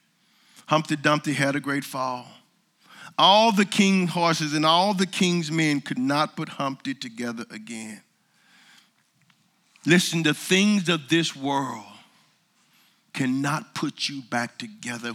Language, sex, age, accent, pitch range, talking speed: English, male, 50-69, American, 150-225 Hz, 125 wpm